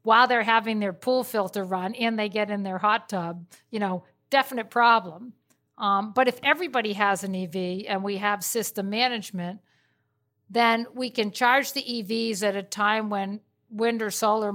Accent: American